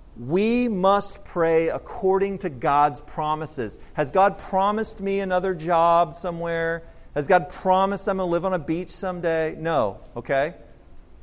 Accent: American